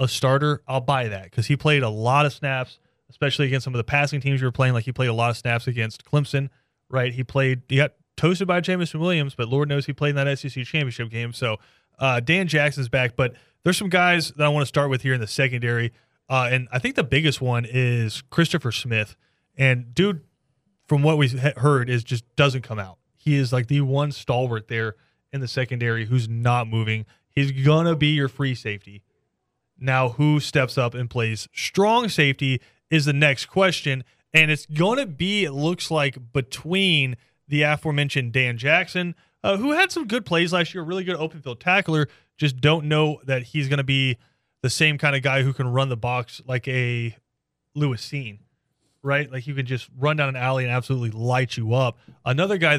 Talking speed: 215 wpm